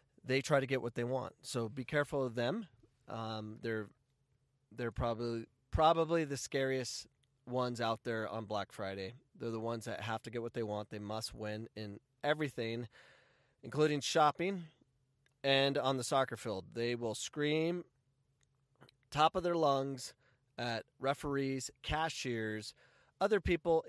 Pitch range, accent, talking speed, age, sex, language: 110-140 Hz, American, 150 wpm, 30-49, male, English